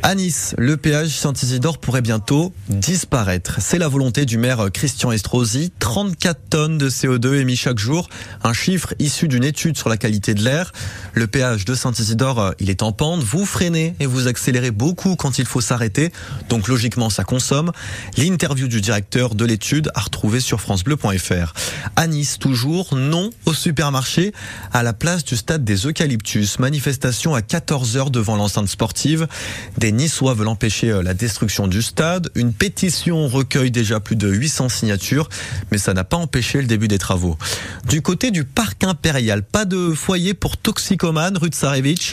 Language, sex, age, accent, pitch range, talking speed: French, male, 20-39, French, 110-155 Hz, 165 wpm